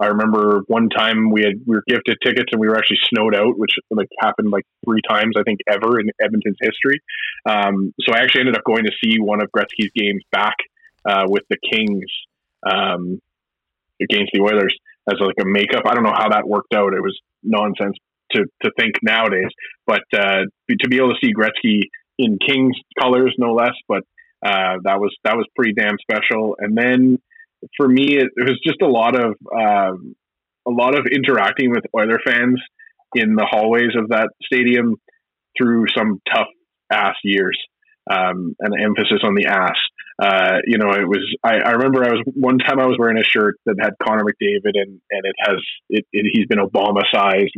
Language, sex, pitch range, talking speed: English, male, 105-125 Hz, 195 wpm